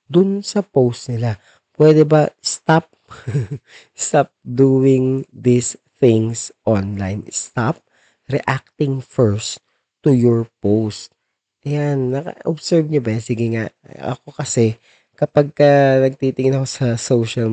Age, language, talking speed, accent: 20-39, Filipino, 115 wpm, native